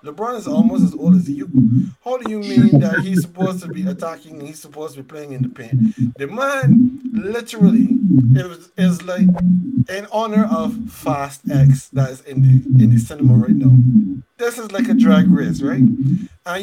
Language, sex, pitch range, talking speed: English, male, 135-230 Hz, 195 wpm